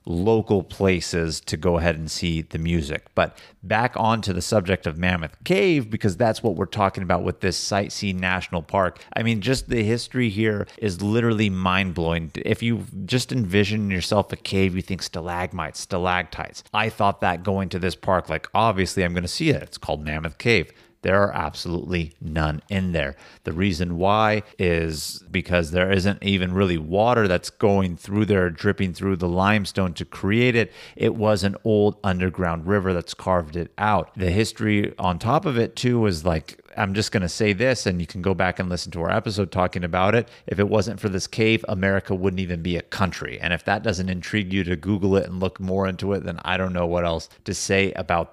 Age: 30-49